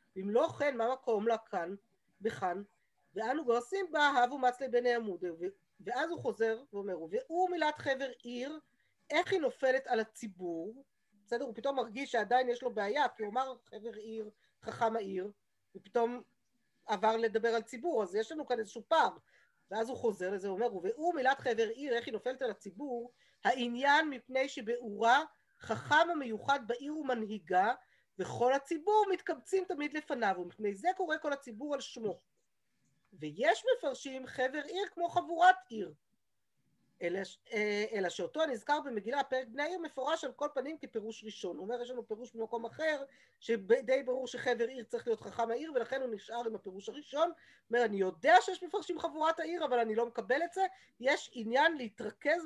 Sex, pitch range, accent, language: female, 220-290 Hz, native, Hebrew